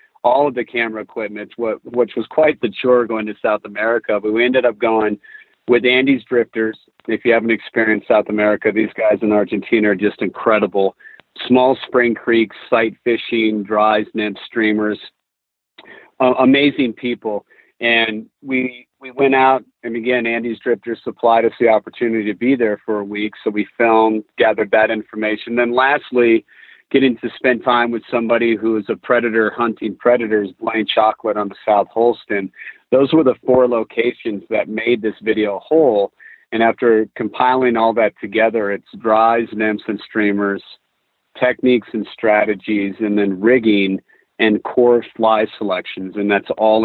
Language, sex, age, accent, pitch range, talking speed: English, male, 40-59, American, 105-120 Hz, 160 wpm